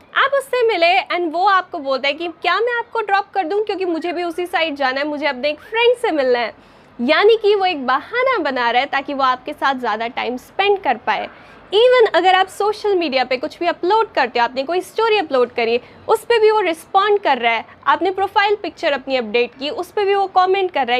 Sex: female